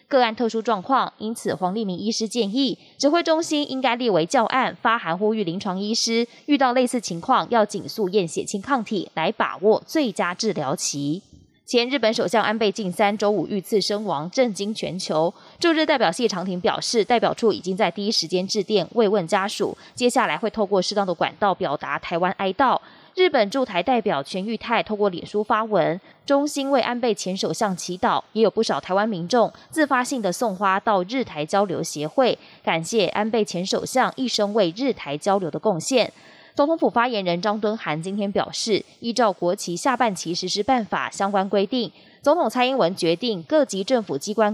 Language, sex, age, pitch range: Chinese, female, 20-39, 190-240 Hz